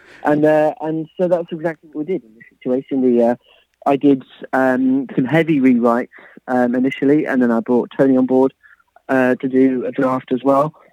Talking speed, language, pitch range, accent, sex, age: 200 wpm, English, 125-145 Hz, British, male, 30-49